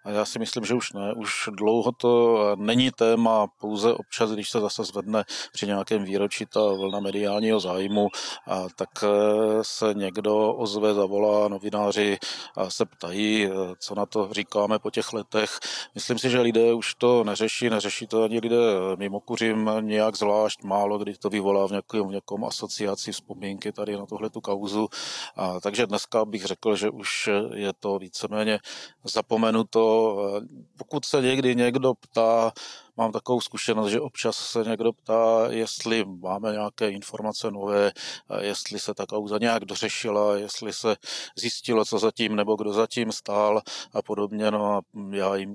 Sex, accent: male, native